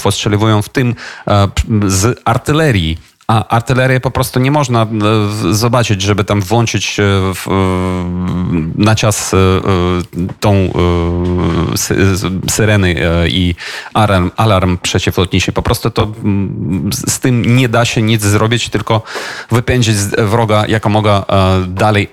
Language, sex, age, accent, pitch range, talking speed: Polish, male, 30-49, native, 95-110 Hz, 105 wpm